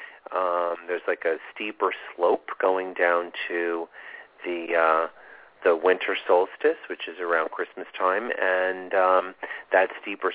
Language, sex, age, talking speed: English, male, 40-59, 135 wpm